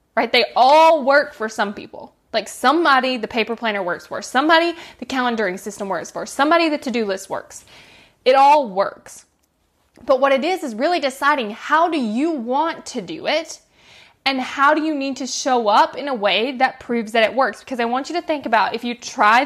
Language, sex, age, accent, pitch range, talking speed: English, female, 20-39, American, 220-285 Hz, 210 wpm